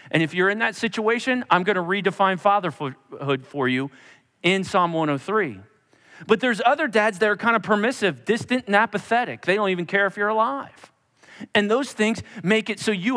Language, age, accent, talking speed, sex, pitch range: English, 40-59, American, 190 wpm, male, 170-230 Hz